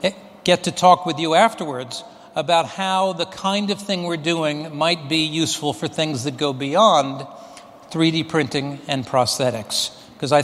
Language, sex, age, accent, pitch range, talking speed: English, male, 60-79, American, 150-195 Hz, 160 wpm